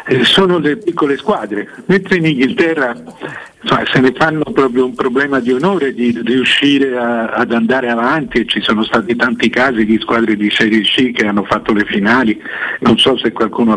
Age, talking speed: 50-69, 185 wpm